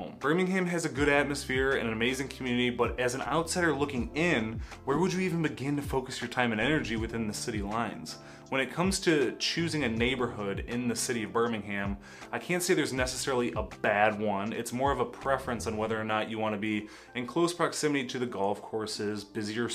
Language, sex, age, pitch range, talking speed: English, male, 20-39, 110-140 Hz, 215 wpm